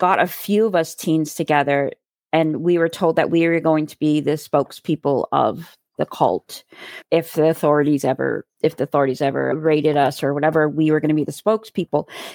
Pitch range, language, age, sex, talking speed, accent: 155-180 Hz, English, 30-49, female, 200 wpm, American